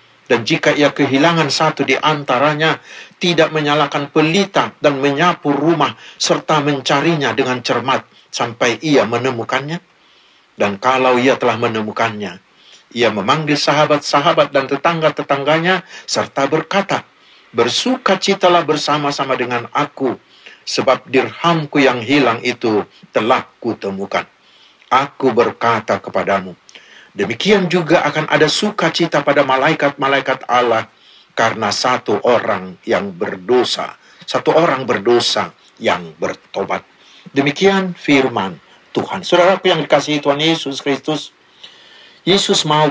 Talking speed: 105 wpm